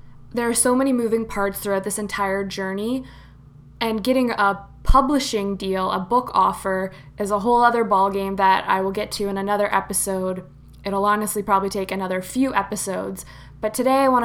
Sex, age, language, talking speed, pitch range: female, 20-39, English, 175 wpm, 195-225 Hz